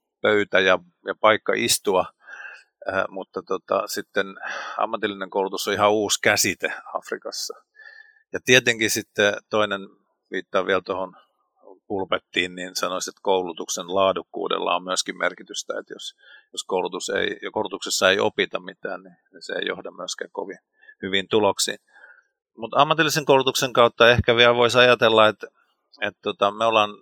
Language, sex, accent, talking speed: Finnish, male, native, 140 wpm